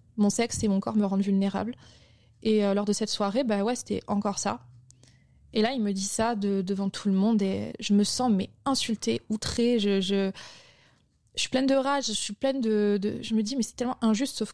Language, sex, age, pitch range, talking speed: French, female, 20-39, 200-225 Hz, 235 wpm